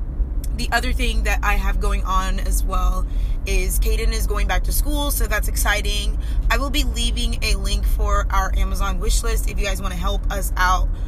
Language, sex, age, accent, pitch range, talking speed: English, female, 20-39, American, 75-95 Hz, 210 wpm